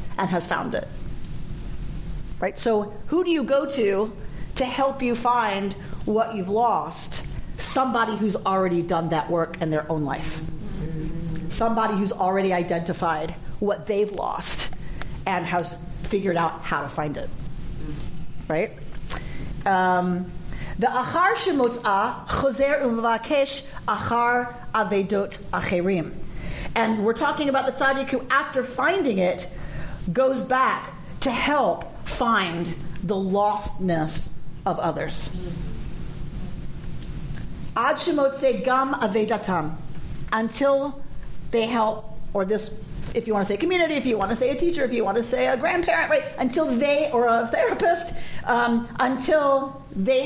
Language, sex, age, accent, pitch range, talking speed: English, female, 40-59, American, 170-255 Hz, 130 wpm